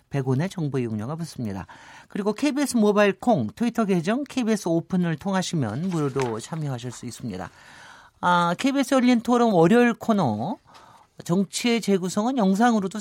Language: Korean